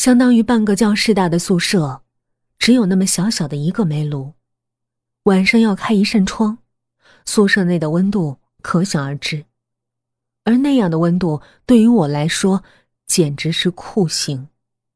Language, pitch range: Chinese, 125-205 Hz